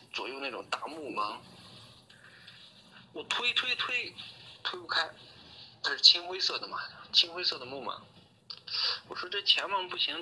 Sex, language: male, Chinese